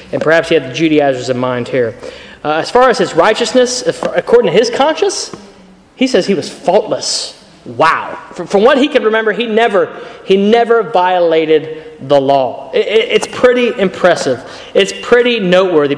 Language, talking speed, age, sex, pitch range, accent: English, 175 wpm, 30-49, male, 210-285 Hz, American